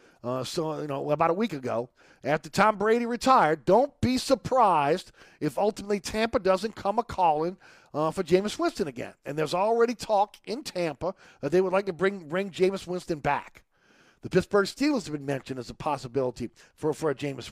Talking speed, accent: 190 wpm, American